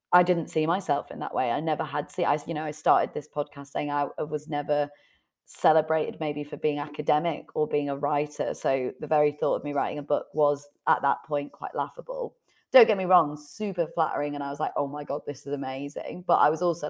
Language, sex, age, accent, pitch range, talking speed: English, female, 30-49, British, 150-175 Hz, 235 wpm